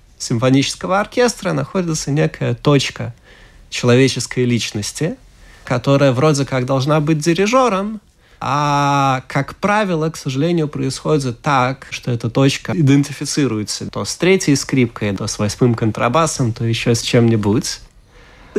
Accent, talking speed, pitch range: native, 115 wpm, 115-160 Hz